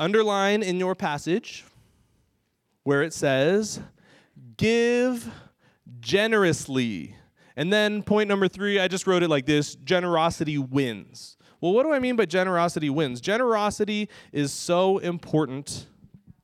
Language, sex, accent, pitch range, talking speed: English, male, American, 135-185 Hz, 125 wpm